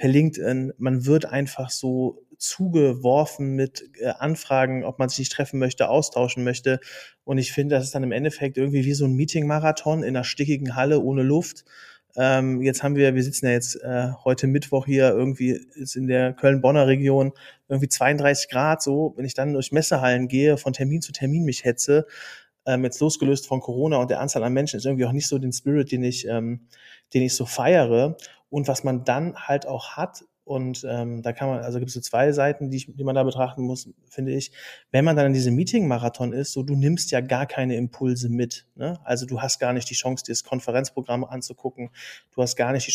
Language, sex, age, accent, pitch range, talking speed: German, male, 30-49, German, 125-140 Hz, 210 wpm